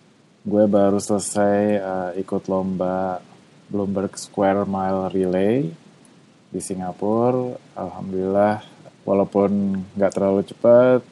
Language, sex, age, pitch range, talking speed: Indonesian, male, 20-39, 95-110 Hz, 90 wpm